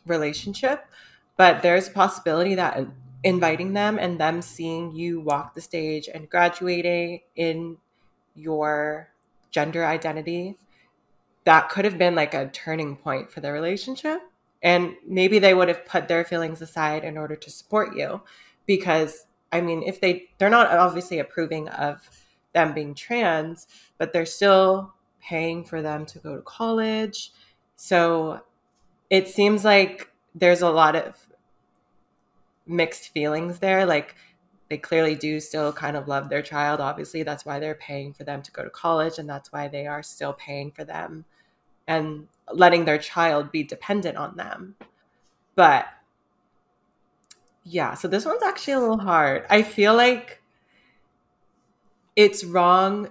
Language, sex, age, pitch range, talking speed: English, female, 20-39, 155-185 Hz, 150 wpm